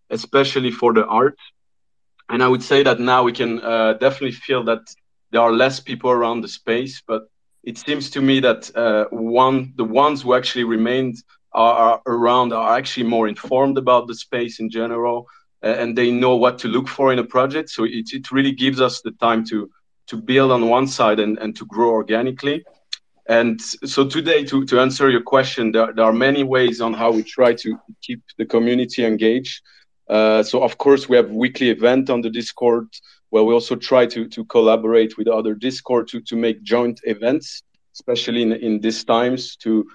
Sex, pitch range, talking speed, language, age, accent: male, 115-130 Hz, 200 wpm, English, 30-49, French